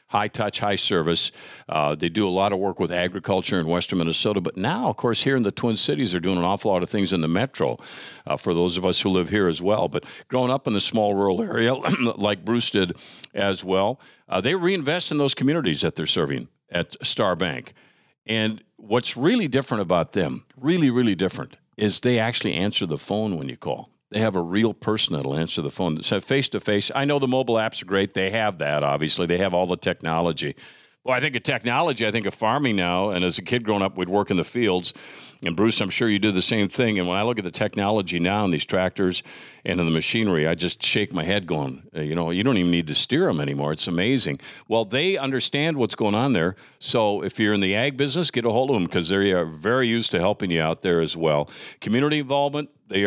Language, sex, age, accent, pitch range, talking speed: English, male, 50-69, American, 90-115 Hz, 240 wpm